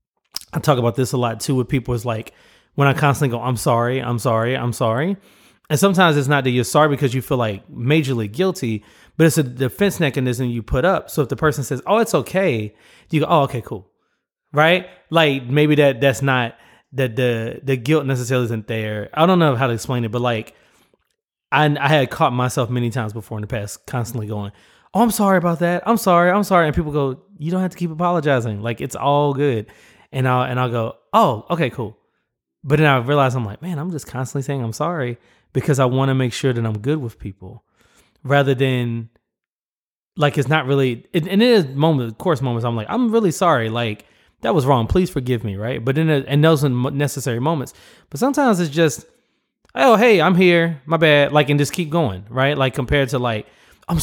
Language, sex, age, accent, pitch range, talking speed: English, male, 20-39, American, 120-160 Hz, 220 wpm